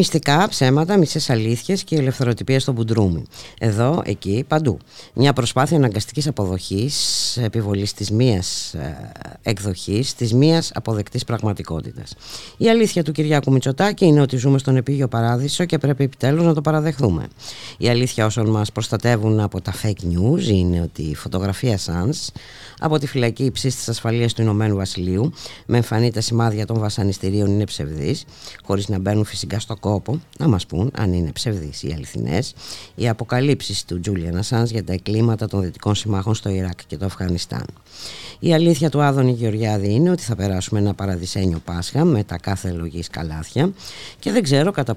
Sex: female